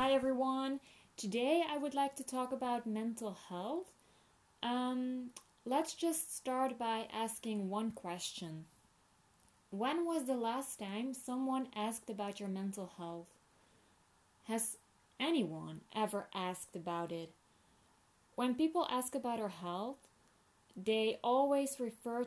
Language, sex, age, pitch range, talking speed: English, female, 20-39, 200-260 Hz, 120 wpm